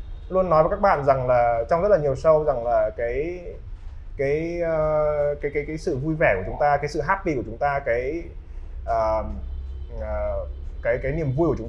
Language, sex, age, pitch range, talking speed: Vietnamese, male, 20-39, 130-190 Hz, 200 wpm